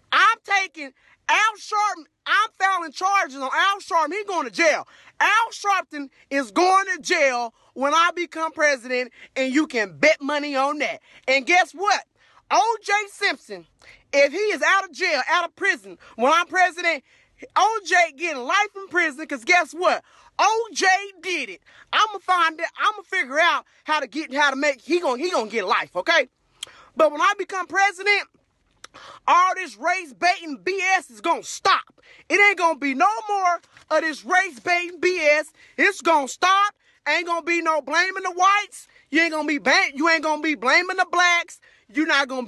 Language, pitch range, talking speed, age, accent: English, 300-375 Hz, 180 wpm, 30-49, American